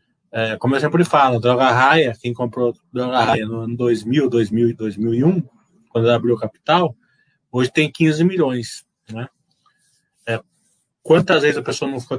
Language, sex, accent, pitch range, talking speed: Portuguese, male, Brazilian, 120-165 Hz, 160 wpm